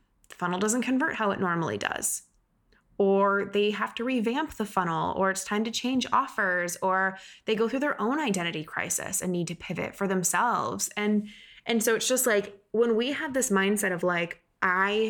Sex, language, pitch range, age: female, English, 180-225 Hz, 20-39